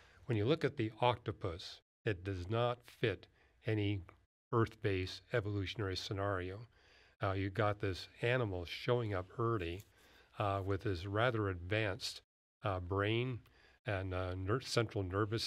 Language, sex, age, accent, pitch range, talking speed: English, male, 50-69, American, 95-115 Hz, 130 wpm